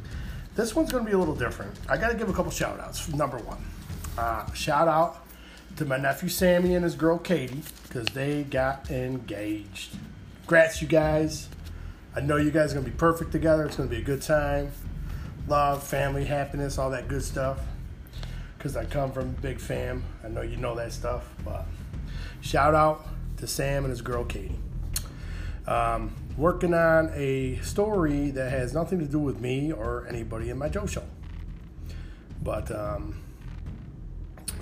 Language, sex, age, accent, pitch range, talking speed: English, male, 30-49, American, 95-150 Hz, 170 wpm